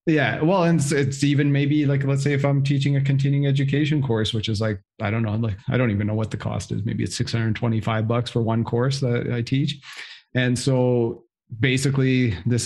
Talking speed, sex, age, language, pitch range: 220 wpm, male, 40-59, English, 110-130 Hz